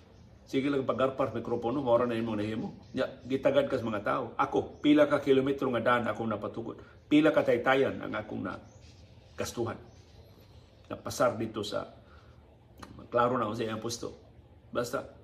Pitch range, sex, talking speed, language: 105-135 Hz, male, 145 wpm, Filipino